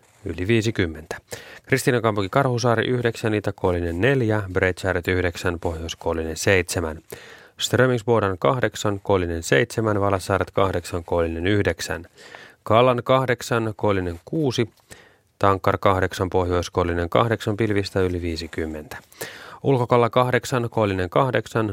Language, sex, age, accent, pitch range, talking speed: Finnish, male, 30-49, native, 90-115 Hz, 90 wpm